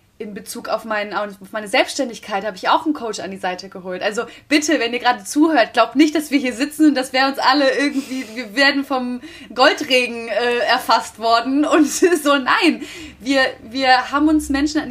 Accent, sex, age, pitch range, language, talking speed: German, female, 20-39, 210-275 Hz, German, 200 wpm